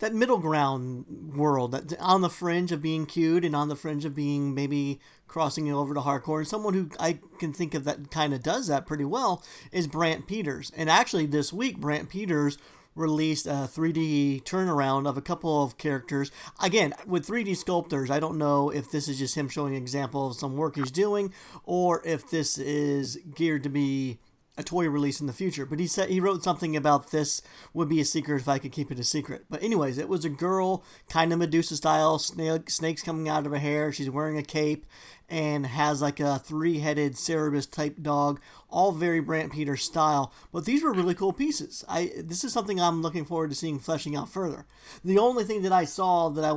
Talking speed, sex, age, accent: 215 wpm, male, 40-59, American